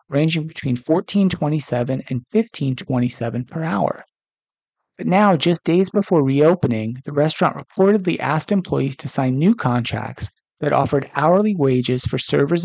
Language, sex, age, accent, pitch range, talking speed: English, male, 30-49, American, 125-170 Hz, 135 wpm